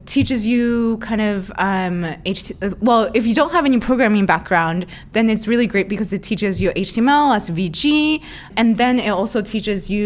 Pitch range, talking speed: 185-235 Hz, 180 wpm